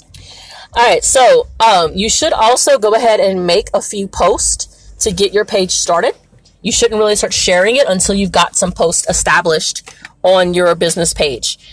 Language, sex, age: English, female, 30-49